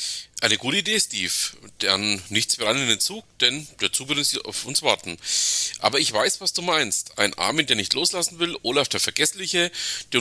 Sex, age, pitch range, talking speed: male, 40-59, 110-160 Hz, 200 wpm